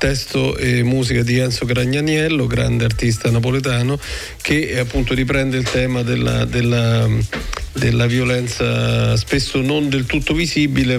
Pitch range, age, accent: 115-130 Hz, 40-59, native